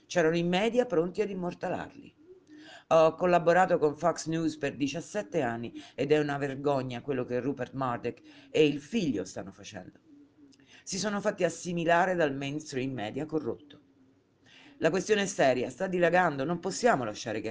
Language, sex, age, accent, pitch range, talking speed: Italian, female, 50-69, native, 135-180 Hz, 155 wpm